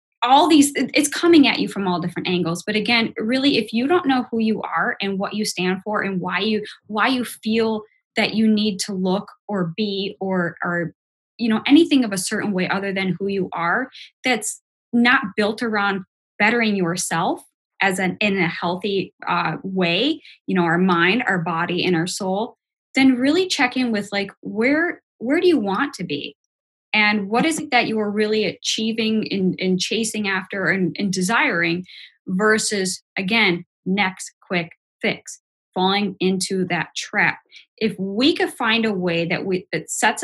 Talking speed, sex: 185 wpm, female